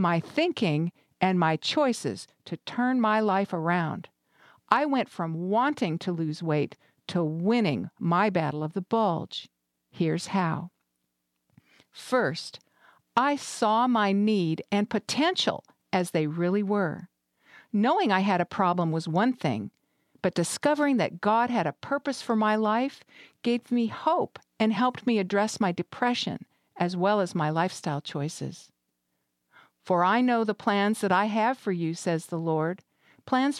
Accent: American